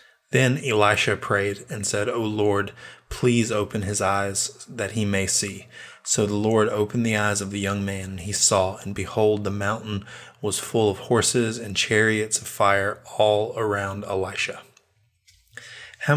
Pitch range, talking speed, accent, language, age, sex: 100-115 Hz, 165 wpm, American, English, 20-39, male